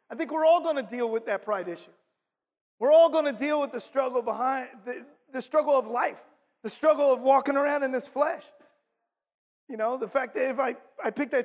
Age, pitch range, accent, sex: 30-49, 245-305 Hz, American, male